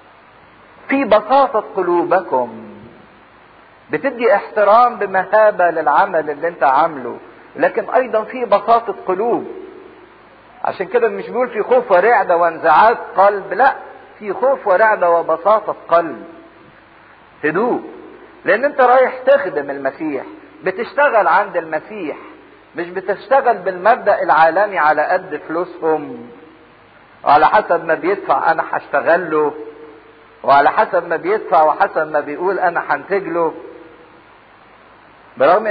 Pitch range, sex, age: 170-245 Hz, male, 50-69